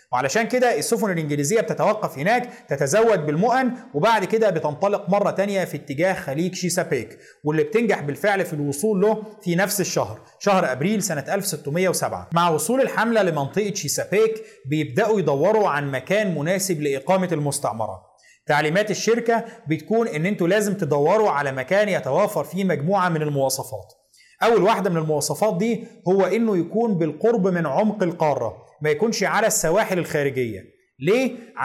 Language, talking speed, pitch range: Arabic, 140 wpm, 160-215 Hz